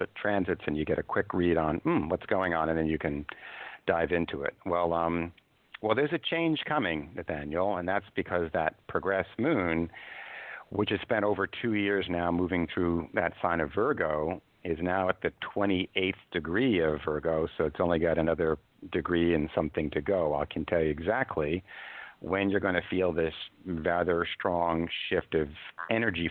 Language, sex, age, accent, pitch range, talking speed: English, male, 50-69, American, 80-100 Hz, 180 wpm